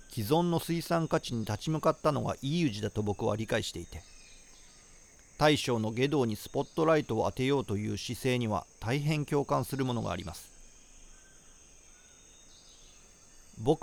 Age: 40-59